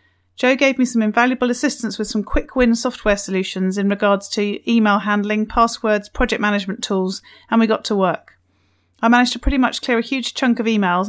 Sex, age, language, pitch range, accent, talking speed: female, 30-49, English, 200-235 Hz, British, 200 wpm